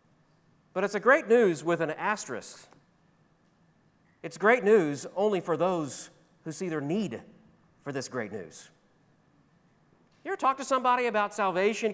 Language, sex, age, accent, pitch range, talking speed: English, male, 40-59, American, 155-200 Hz, 145 wpm